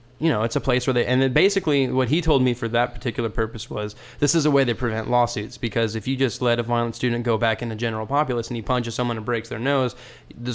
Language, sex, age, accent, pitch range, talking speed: English, male, 20-39, American, 115-130 Hz, 280 wpm